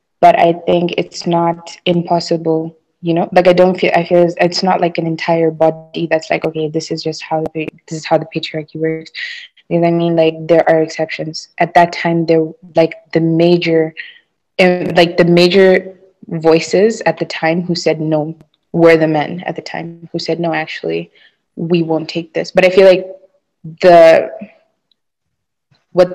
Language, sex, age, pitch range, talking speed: English, female, 20-39, 160-175 Hz, 185 wpm